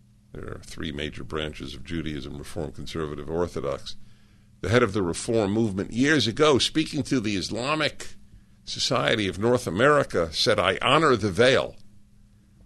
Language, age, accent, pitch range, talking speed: English, 50-69, American, 85-105 Hz, 145 wpm